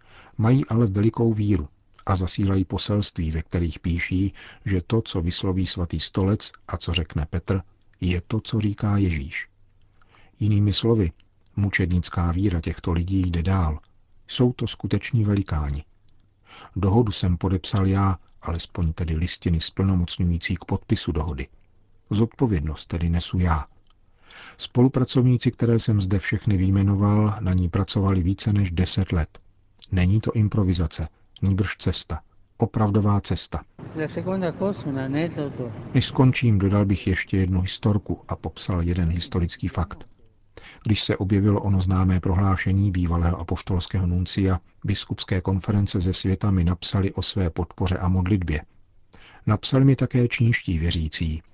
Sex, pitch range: male, 90-105 Hz